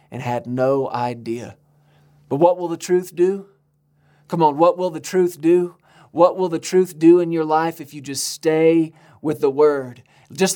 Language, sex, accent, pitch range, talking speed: English, male, American, 145-175 Hz, 190 wpm